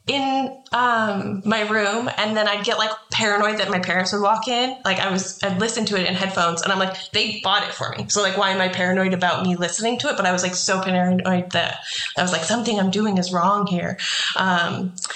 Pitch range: 180-215 Hz